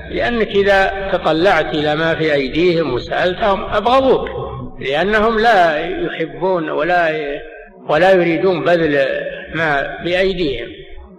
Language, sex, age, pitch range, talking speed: Arabic, male, 60-79, 150-210 Hz, 95 wpm